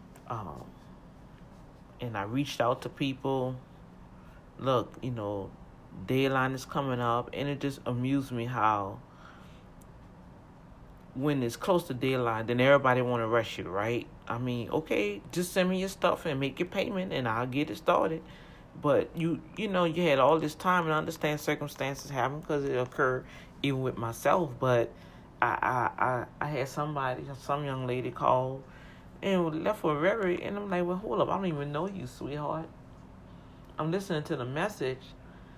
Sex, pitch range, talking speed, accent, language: male, 130-180 Hz, 170 wpm, American, English